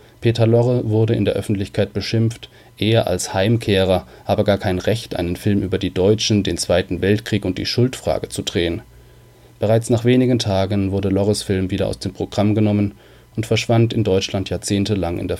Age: 30-49